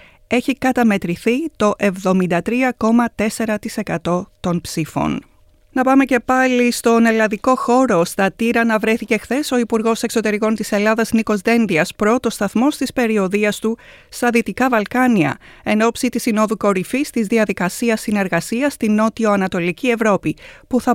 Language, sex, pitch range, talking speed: Greek, female, 195-240 Hz, 130 wpm